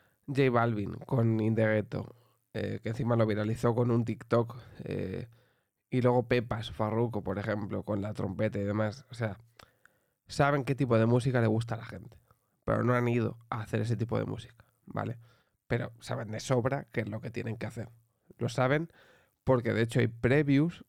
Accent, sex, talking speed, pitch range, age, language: Spanish, male, 190 wpm, 115-130 Hz, 20-39, Spanish